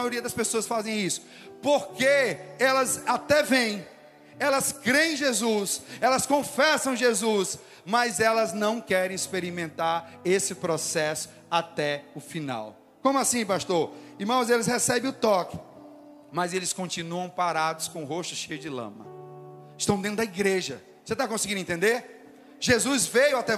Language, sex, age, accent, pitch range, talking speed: Portuguese, male, 40-59, Brazilian, 190-245 Hz, 140 wpm